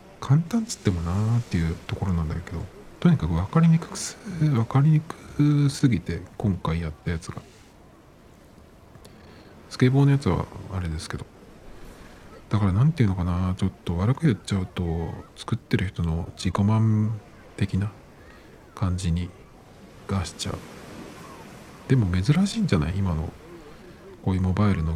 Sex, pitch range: male, 85-110 Hz